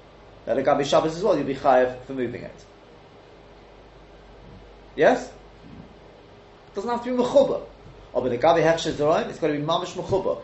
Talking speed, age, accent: 150 wpm, 30-49, British